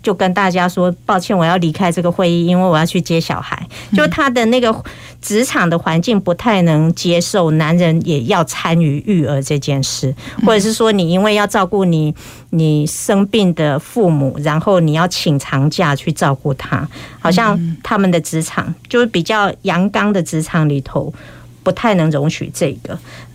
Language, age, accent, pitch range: Chinese, 50-69, American, 155-205 Hz